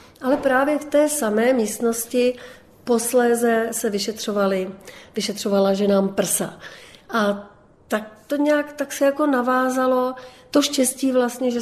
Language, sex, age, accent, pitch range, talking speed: Czech, female, 40-59, native, 205-240 Hz, 100 wpm